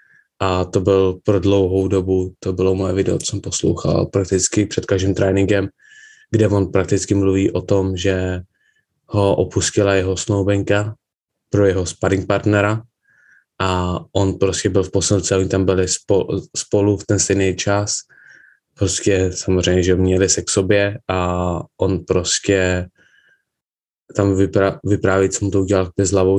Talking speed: 150 wpm